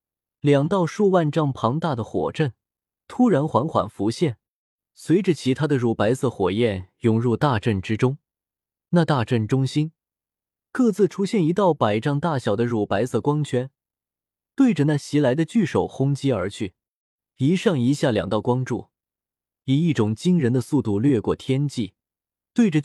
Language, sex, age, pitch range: Chinese, male, 20-39, 115-165 Hz